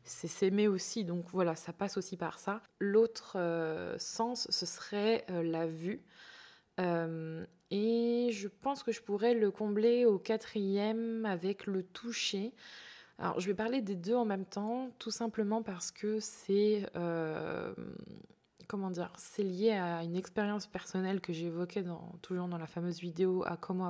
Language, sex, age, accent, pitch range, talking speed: French, female, 20-39, French, 170-205 Hz, 155 wpm